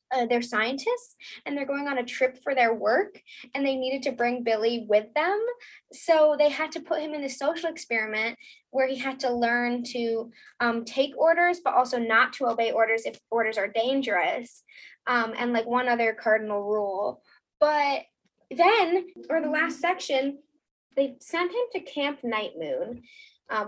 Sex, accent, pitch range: female, American, 230-315 Hz